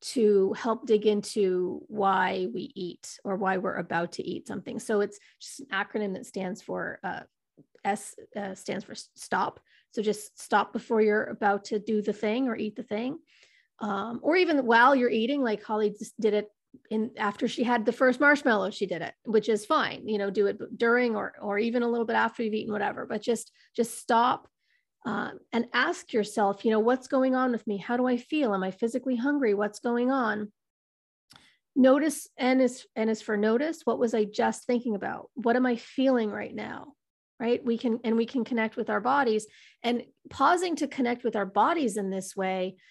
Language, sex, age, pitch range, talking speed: English, female, 30-49, 205-250 Hz, 205 wpm